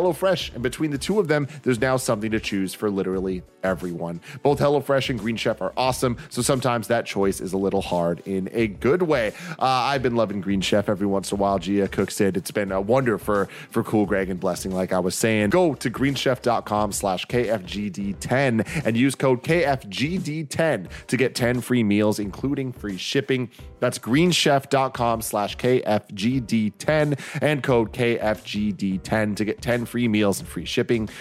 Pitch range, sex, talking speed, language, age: 105-135 Hz, male, 185 wpm, English, 30-49